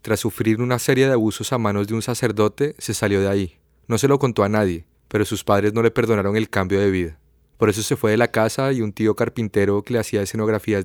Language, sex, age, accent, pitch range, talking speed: Spanish, male, 30-49, Colombian, 100-120 Hz, 255 wpm